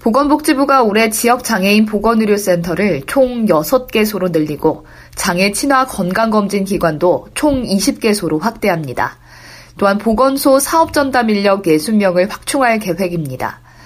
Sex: female